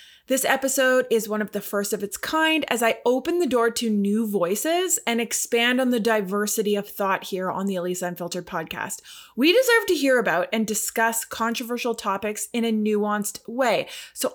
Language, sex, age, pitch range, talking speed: English, female, 20-39, 210-285 Hz, 190 wpm